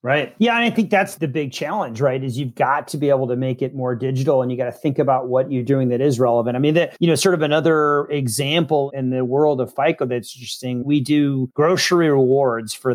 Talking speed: 250 wpm